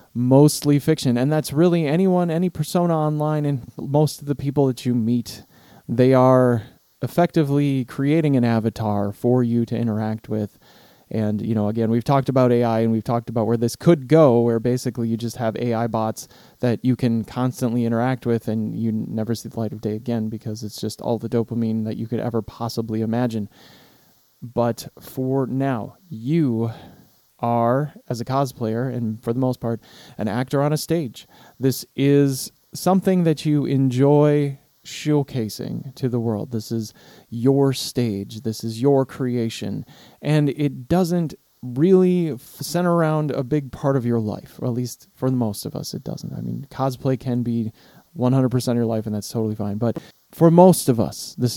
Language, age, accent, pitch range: English, 20-39, American, 115-140 Hz